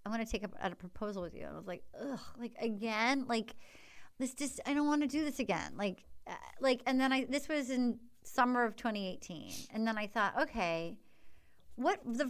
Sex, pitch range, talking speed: female, 230-295 Hz, 215 wpm